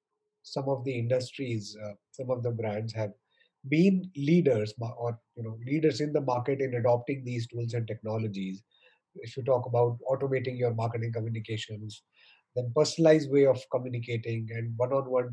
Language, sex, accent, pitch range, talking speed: English, male, Indian, 120-155 Hz, 155 wpm